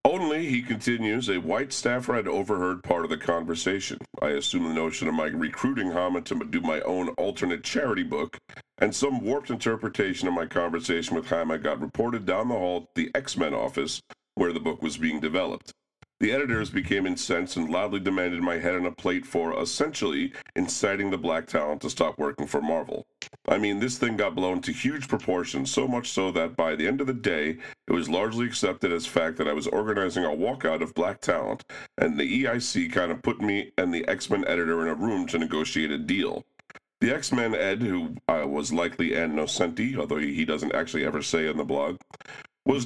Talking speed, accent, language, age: 200 wpm, American, English, 40-59